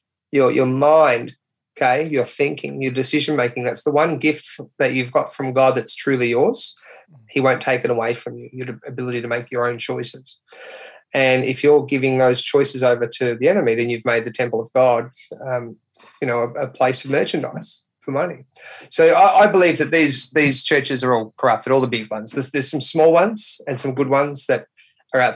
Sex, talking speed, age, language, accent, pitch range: male, 210 wpm, 30-49, English, Australian, 125-150 Hz